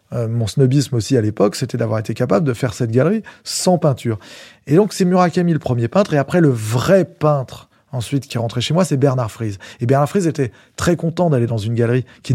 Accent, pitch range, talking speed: French, 120-150 Hz, 230 wpm